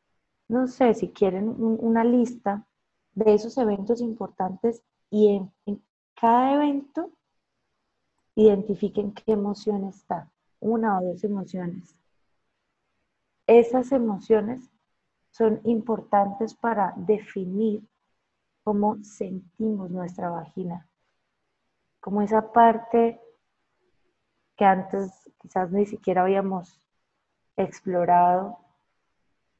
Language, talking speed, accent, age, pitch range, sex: Spanish, 85 wpm, Colombian, 20-39, 190-225 Hz, female